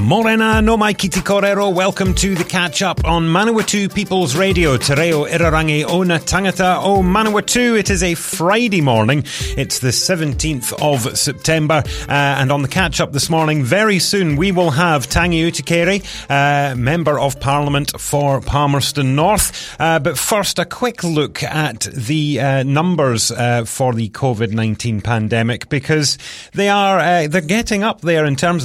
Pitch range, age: 120-170 Hz, 30-49